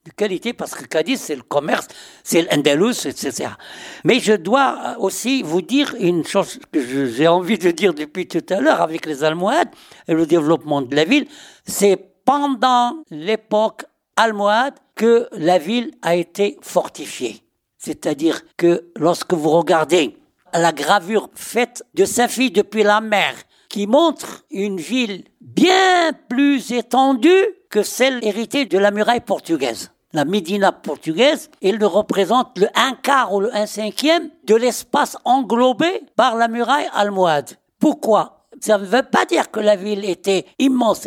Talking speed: 155 wpm